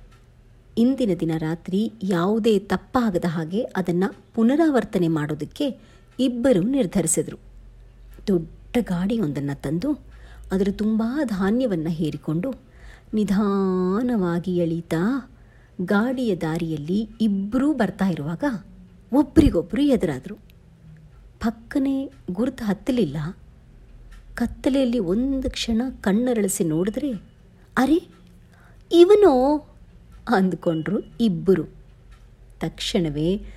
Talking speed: 70 wpm